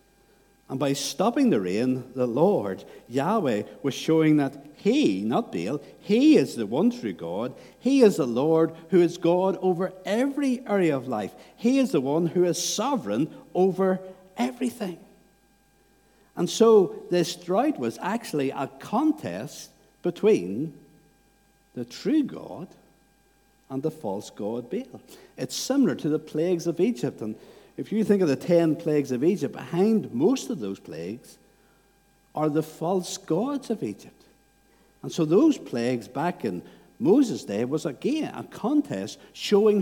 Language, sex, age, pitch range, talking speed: English, male, 60-79, 140-205 Hz, 150 wpm